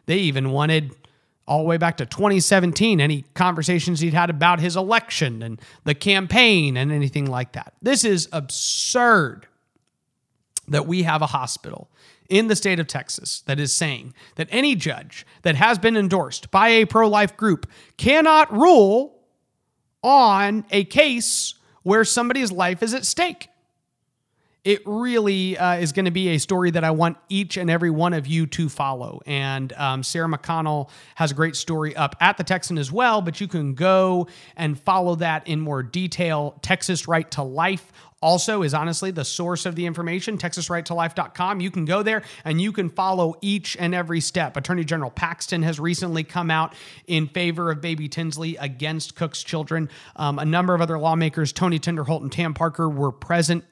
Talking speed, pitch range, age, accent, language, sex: 175 wpm, 150-185 Hz, 30-49, American, English, male